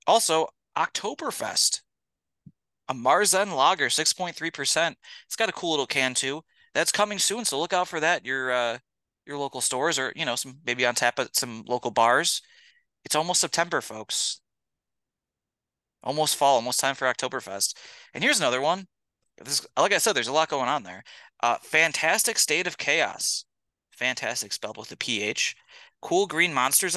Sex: male